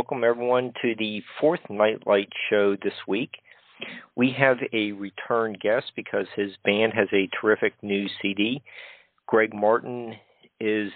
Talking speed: 135 wpm